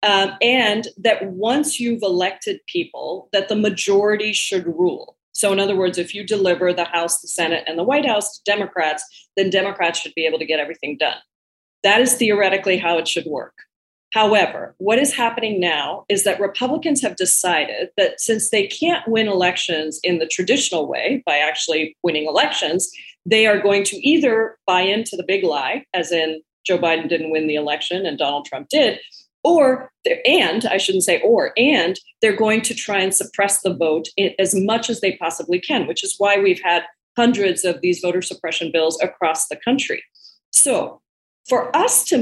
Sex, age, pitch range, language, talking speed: female, 40-59, 175-230 Hz, English, 185 wpm